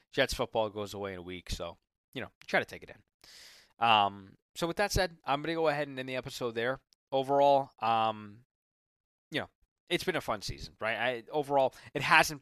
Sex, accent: male, American